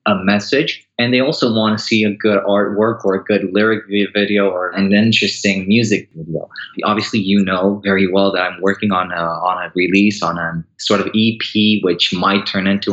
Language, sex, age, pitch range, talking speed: English, male, 20-39, 95-110 Hz, 195 wpm